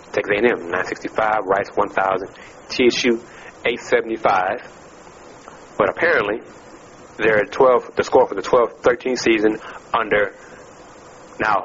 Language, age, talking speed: English, 30-49, 95 wpm